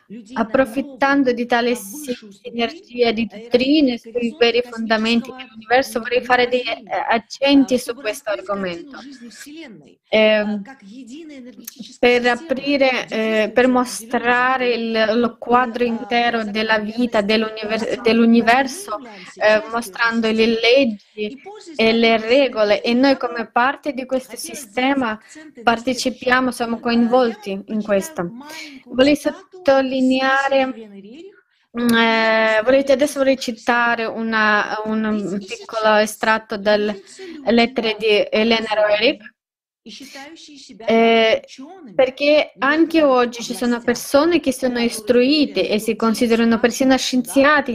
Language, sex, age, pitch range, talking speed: Italian, female, 20-39, 220-265 Hz, 100 wpm